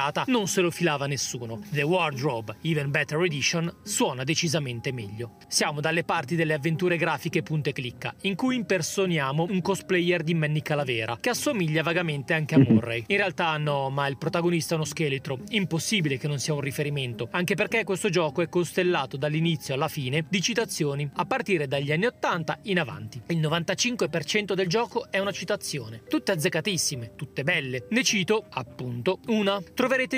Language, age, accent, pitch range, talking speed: Italian, 30-49, native, 150-195 Hz, 165 wpm